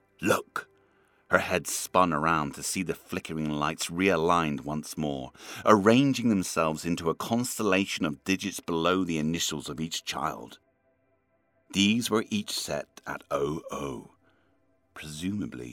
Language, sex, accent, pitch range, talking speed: English, male, British, 75-95 Hz, 125 wpm